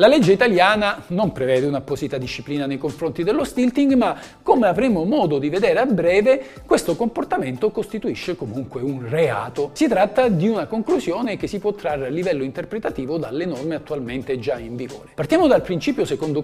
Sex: male